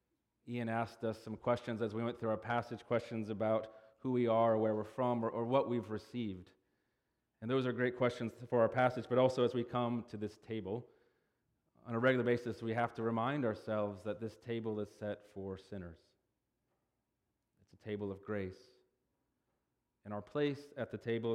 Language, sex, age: English, male, 30-49